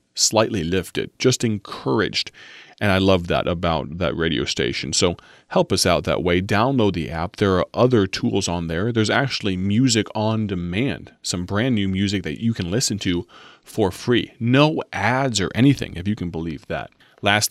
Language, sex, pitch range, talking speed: English, male, 85-105 Hz, 180 wpm